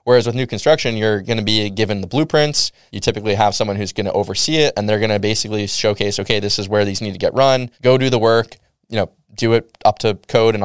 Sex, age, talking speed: male, 20-39, 265 wpm